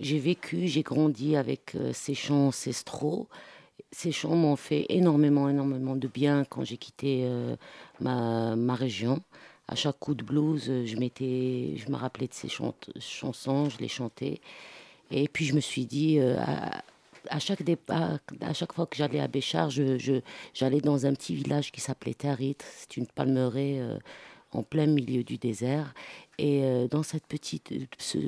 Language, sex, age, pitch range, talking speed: French, female, 50-69, 125-150 Hz, 185 wpm